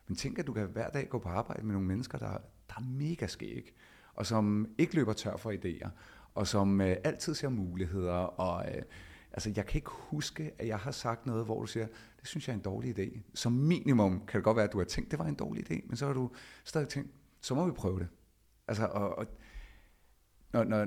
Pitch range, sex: 100-115 Hz, male